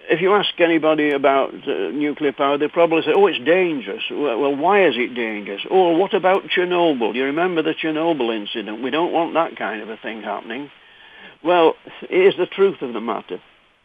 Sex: male